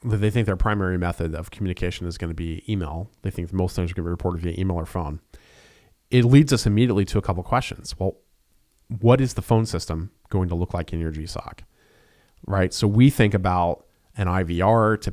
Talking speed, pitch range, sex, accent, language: 220 wpm, 85-110 Hz, male, American, English